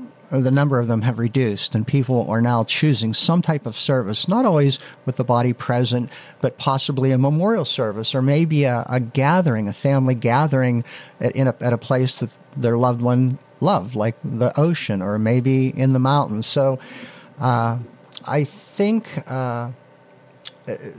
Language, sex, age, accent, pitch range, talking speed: English, male, 50-69, American, 120-150 Hz, 155 wpm